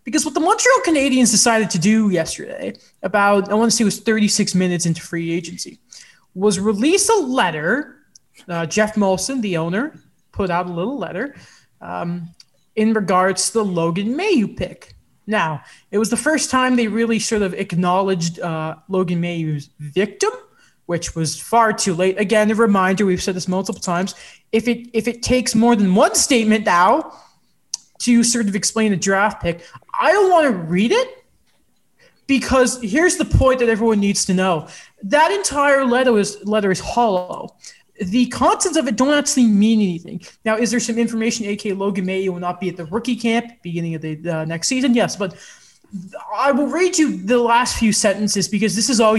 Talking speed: 190 wpm